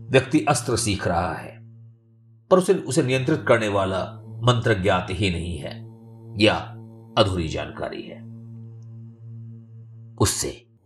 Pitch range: 95-115 Hz